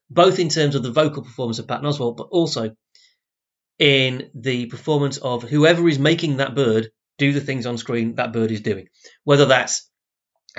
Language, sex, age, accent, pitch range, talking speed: English, male, 30-49, British, 120-160 Hz, 185 wpm